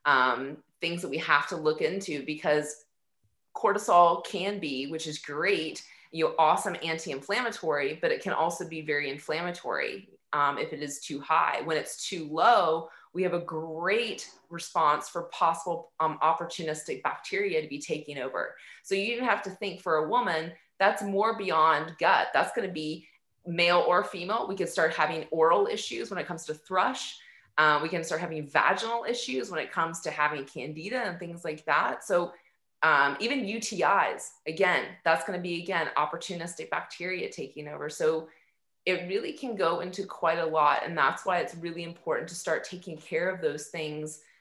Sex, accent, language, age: female, American, English, 20-39